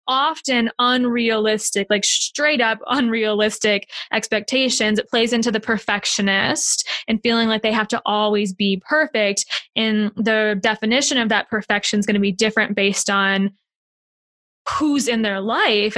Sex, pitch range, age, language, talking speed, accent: female, 210-250 Hz, 10-29, English, 145 wpm, American